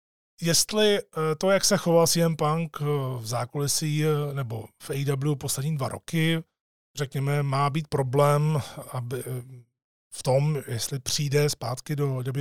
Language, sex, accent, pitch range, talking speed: Czech, male, native, 135-160 Hz, 125 wpm